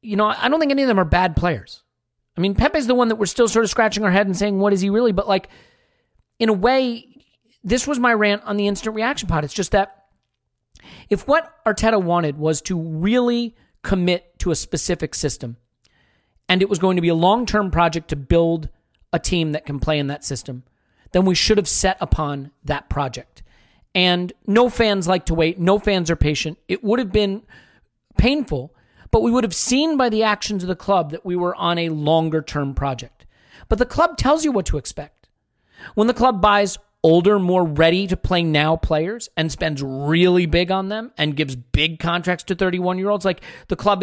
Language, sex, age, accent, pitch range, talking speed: English, male, 40-59, American, 160-220 Hz, 205 wpm